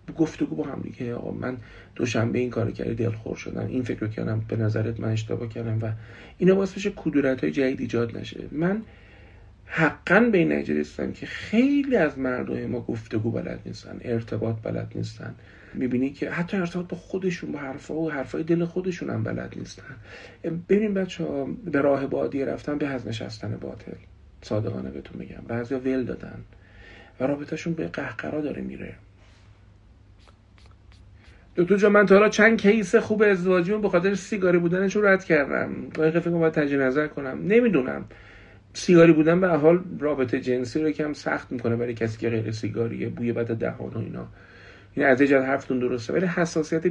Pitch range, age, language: 110-170 Hz, 50-69, Persian